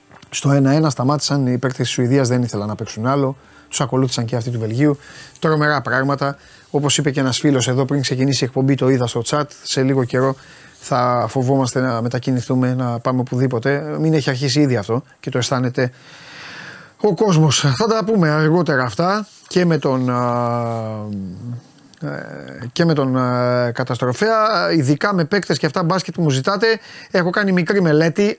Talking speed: 170 wpm